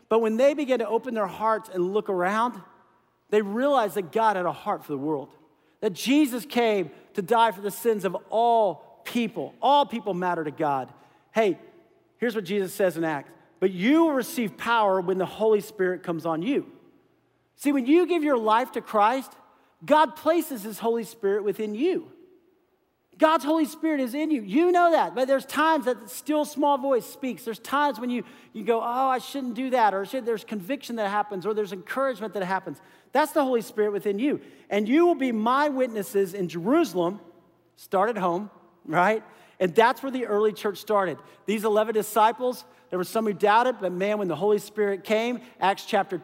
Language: English